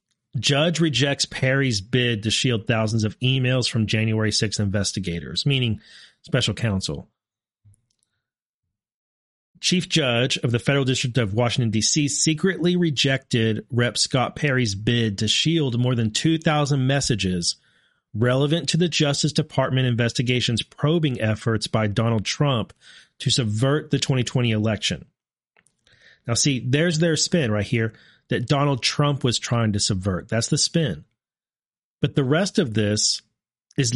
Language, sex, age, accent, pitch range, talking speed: English, male, 40-59, American, 115-150 Hz, 135 wpm